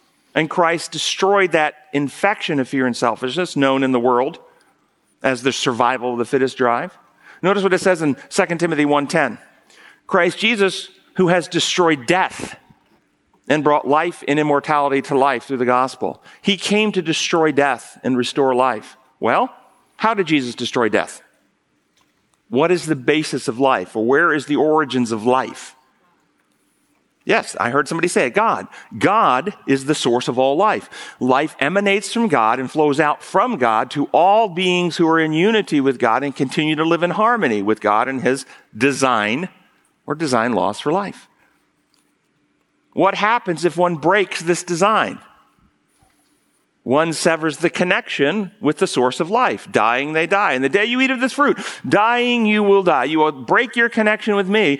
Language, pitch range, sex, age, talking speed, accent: English, 145-215 Hz, male, 50-69, 170 wpm, American